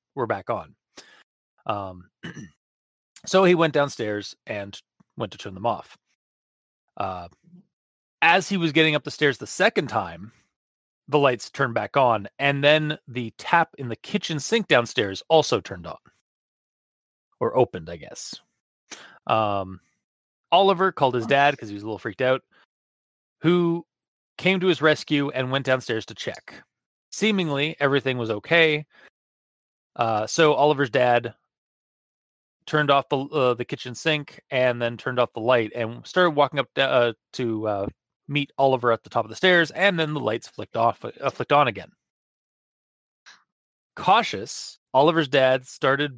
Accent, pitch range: American, 120-160 Hz